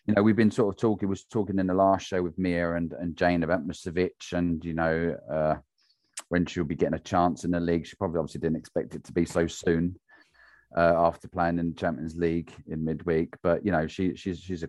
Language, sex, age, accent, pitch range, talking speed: English, male, 30-49, British, 85-110 Hz, 235 wpm